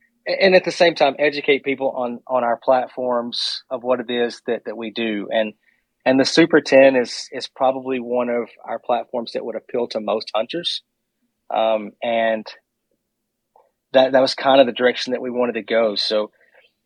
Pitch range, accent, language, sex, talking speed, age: 115-135 Hz, American, English, male, 185 wpm, 30-49